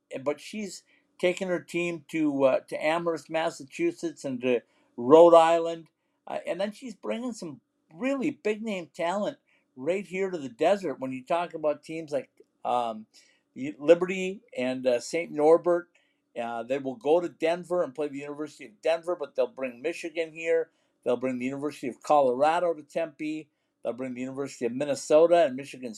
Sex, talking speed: male, 170 wpm